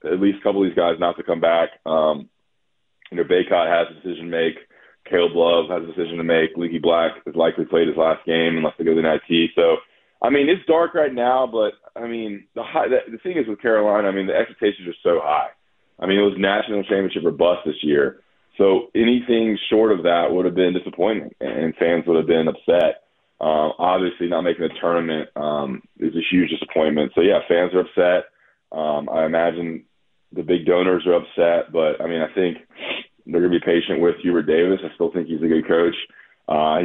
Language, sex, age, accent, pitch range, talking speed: English, male, 20-39, American, 80-95 Hz, 220 wpm